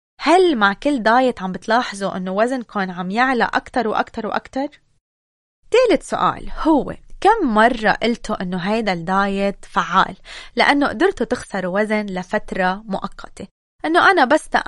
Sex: female